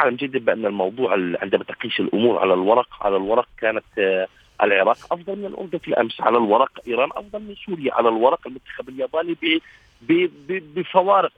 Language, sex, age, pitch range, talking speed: Arabic, male, 50-69, 135-195 Hz, 155 wpm